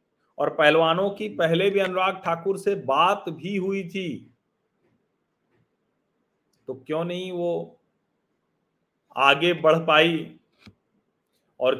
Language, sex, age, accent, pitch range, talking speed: Hindi, male, 40-59, native, 140-180 Hz, 100 wpm